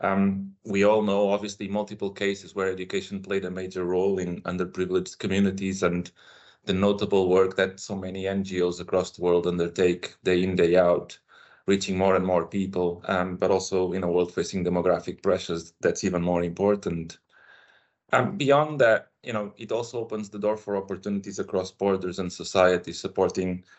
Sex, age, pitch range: male, 30-49, 90-100 Hz